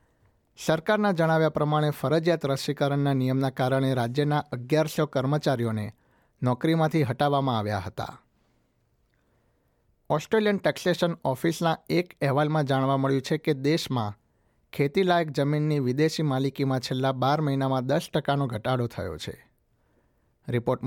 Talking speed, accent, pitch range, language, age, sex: 105 wpm, native, 125-145 Hz, Gujarati, 60-79, male